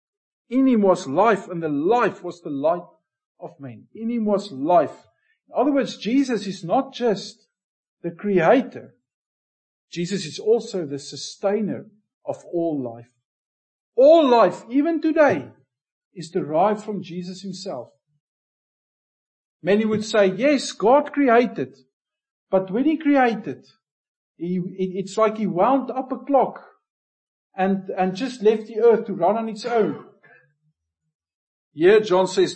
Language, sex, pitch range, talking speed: English, male, 145-230 Hz, 135 wpm